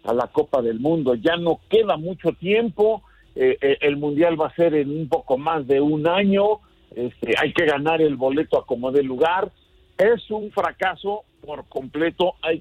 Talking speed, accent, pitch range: 190 wpm, Mexican, 155-200 Hz